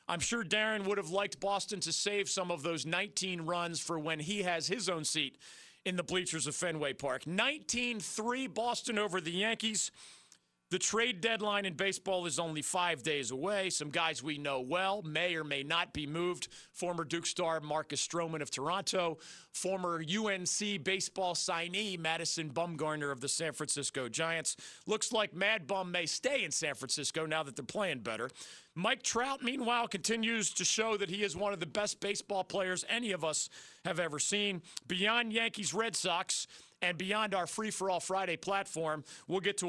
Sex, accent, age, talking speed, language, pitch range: male, American, 40-59, 180 wpm, English, 160-205 Hz